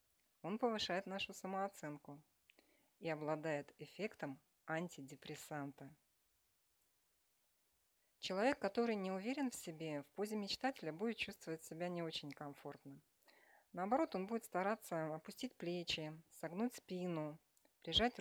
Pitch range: 155-200 Hz